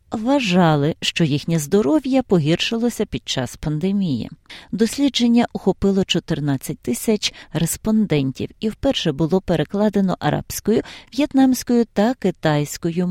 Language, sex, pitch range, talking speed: Ukrainian, female, 155-220 Hz, 95 wpm